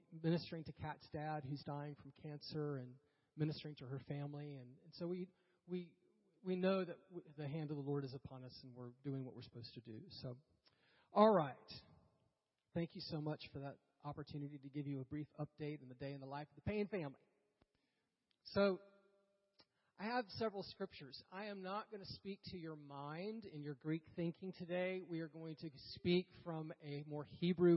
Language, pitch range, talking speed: English, 145-190 Hz, 195 wpm